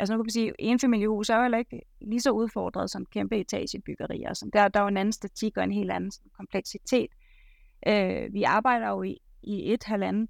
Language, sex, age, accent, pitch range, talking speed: Danish, female, 30-49, native, 200-240 Hz, 235 wpm